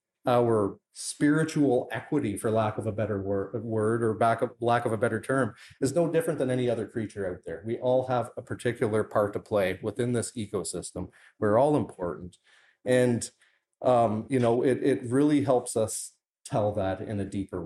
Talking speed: 185 wpm